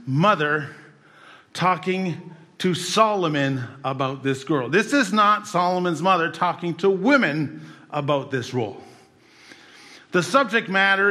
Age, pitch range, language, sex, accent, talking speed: 50-69, 160-210 Hz, English, male, American, 115 wpm